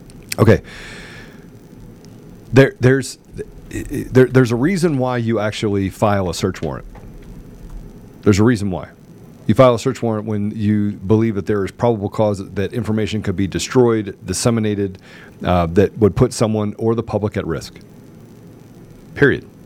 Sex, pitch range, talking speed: male, 100-125 Hz, 145 wpm